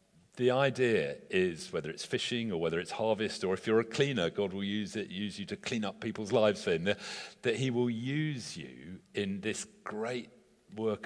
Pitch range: 95-120 Hz